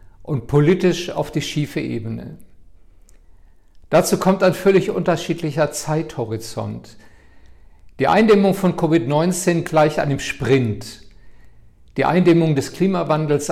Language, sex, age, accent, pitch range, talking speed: German, male, 50-69, German, 115-160 Hz, 100 wpm